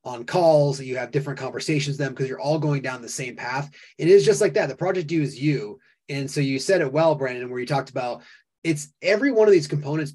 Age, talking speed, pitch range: 20-39, 255 wpm, 130-165 Hz